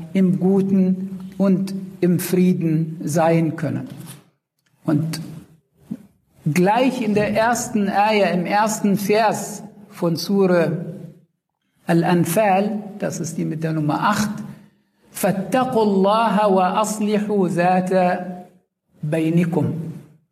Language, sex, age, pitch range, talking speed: German, male, 60-79, 165-205 Hz, 90 wpm